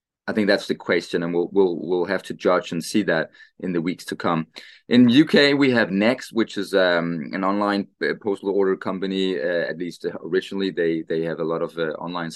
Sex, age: male, 20-39